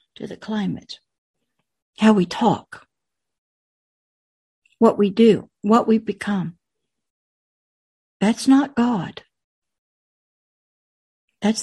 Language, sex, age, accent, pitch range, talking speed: English, female, 60-79, American, 195-240 Hz, 85 wpm